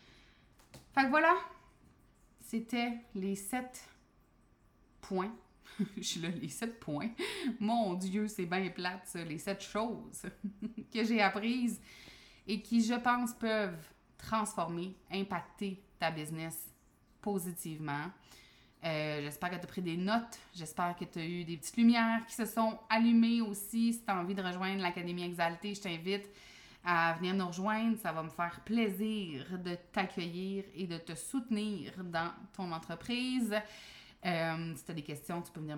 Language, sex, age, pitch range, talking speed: French, female, 20-39, 175-220 Hz, 155 wpm